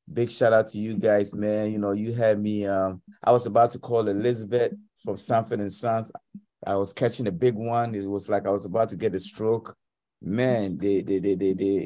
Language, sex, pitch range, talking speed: English, male, 105-130 Hz, 225 wpm